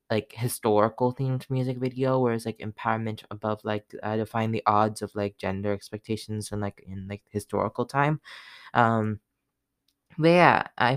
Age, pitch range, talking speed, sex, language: 10-29, 105-130 Hz, 160 wpm, female, English